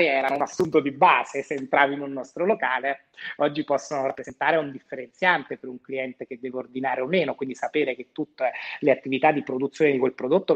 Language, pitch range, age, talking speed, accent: Italian, 130-160 Hz, 30-49, 200 wpm, native